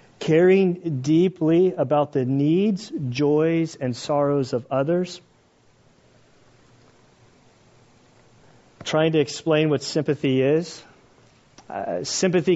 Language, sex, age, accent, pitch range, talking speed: English, male, 40-59, American, 130-155 Hz, 90 wpm